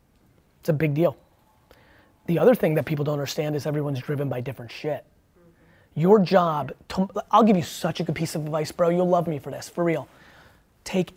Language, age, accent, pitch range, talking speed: English, 30-49, American, 150-175 Hz, 200 wpm